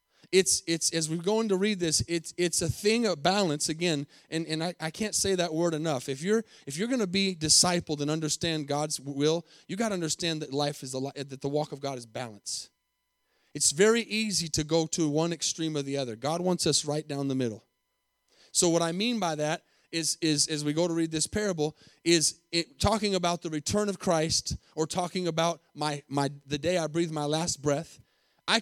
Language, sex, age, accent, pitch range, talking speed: English, male, 30-49, American, 150-205 Hz, 220 wpm